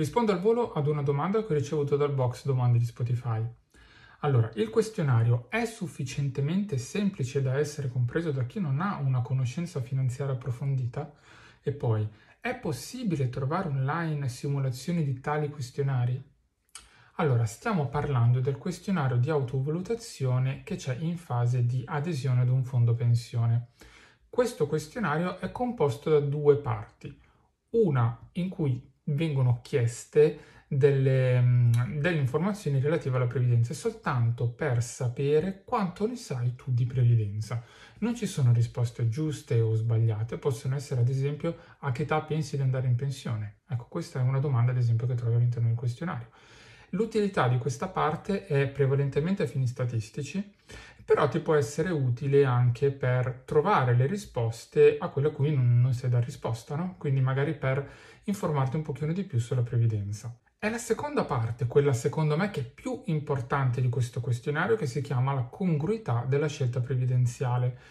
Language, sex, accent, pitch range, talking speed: Italian, male, native, 125-155 Hz, 155 wpm